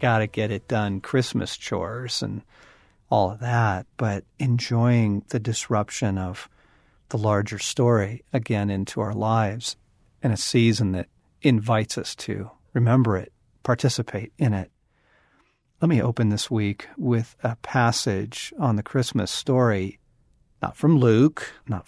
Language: English